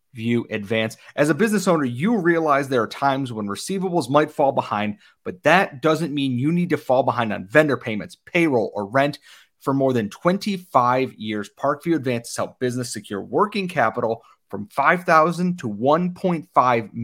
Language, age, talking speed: English, 30-49, 170 wpm